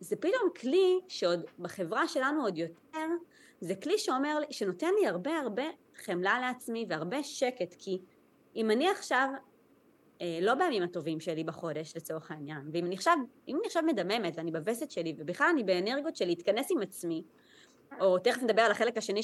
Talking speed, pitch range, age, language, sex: 160 wpm, 180-270 Hz, 20-39, Hebrew, female